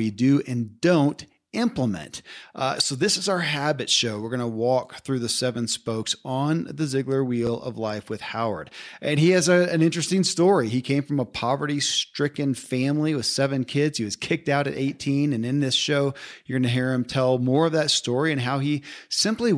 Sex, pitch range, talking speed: male, 120-150 Hz, 210 wpm